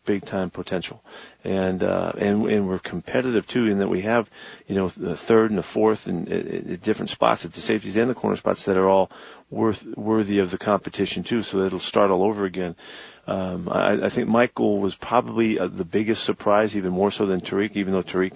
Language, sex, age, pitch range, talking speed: English, male, 40-59, 95-110 Hz, 215 wpm